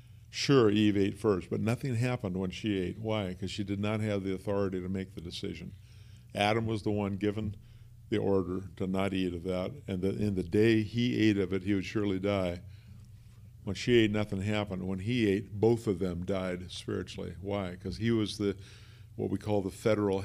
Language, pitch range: English, 95-110 Hz